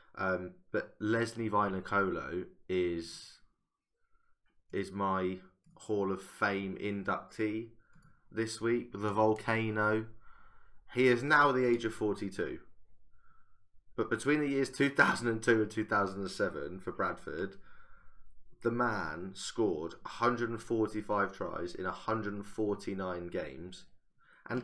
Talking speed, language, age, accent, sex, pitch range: 95 wpm, English, 20-39, British, male, 95-110 Hz